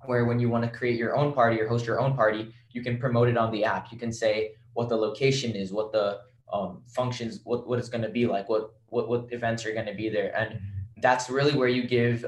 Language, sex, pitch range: English, male, 110-125 Hz